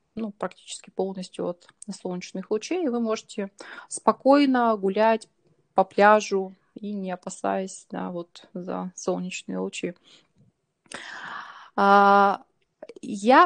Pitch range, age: 185-235 Hz, 20-39